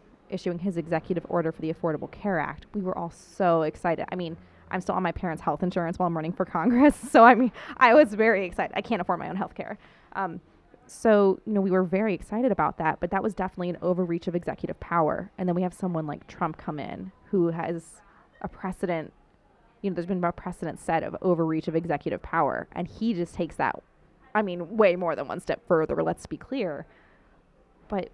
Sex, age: female, 20-39